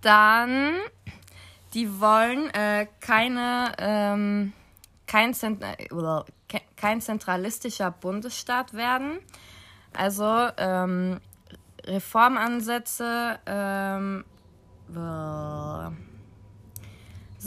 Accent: German